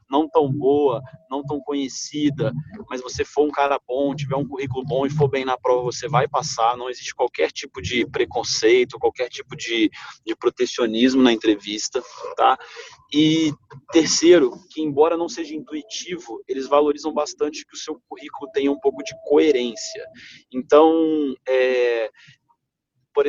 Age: 30-49